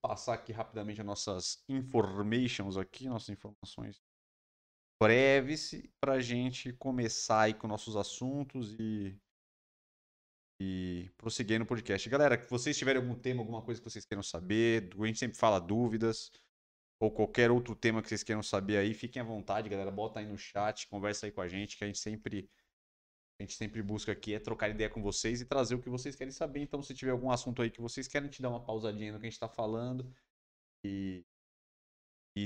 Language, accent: Portuguese, Brazilian